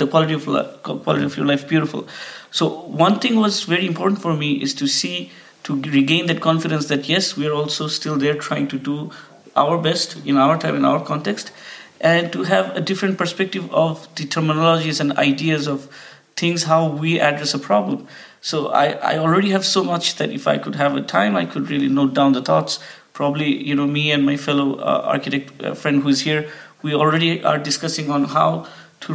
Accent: Indian